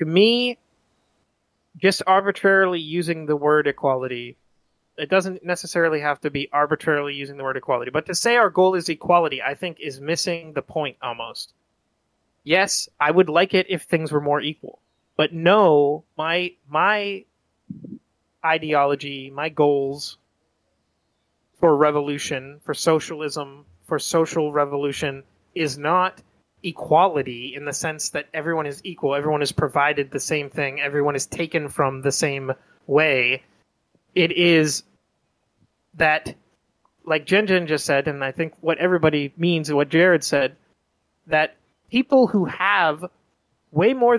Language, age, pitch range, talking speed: English, 30-49, 145-175 Hz, 140 wpm